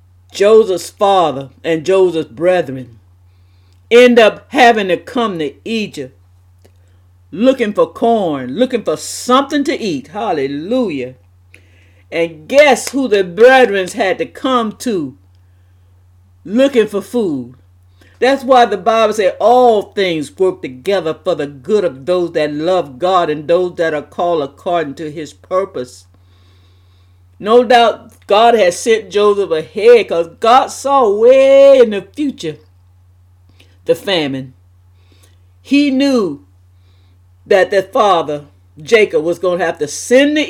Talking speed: 130 wpm